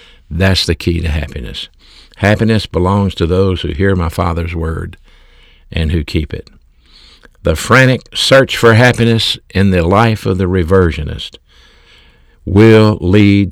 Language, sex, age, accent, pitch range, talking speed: English, male, 60-79, American, 80-105 Hz, 140 wpm